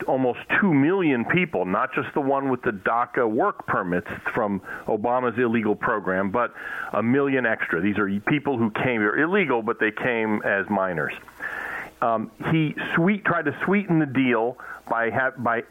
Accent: American